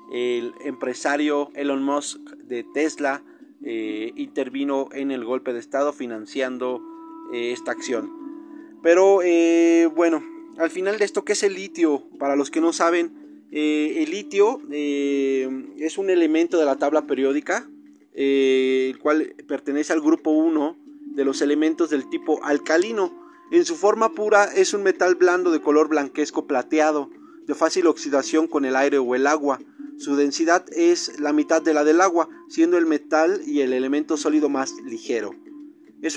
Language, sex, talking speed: Spanish, male, 160 wpm